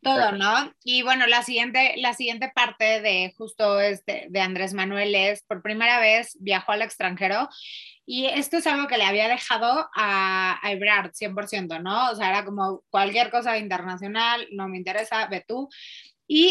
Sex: female